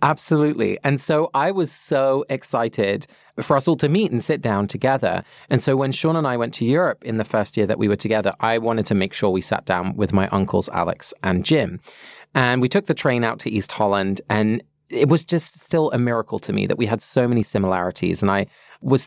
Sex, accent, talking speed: male, British, 235 wpm